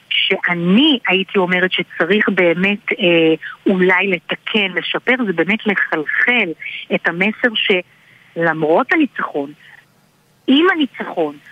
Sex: female